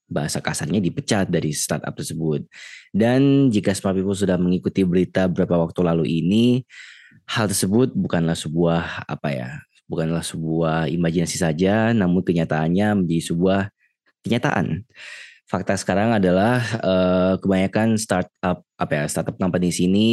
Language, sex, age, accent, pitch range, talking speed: Indonesian, male, 20-39, native, 85-95 Hz, 120 wpm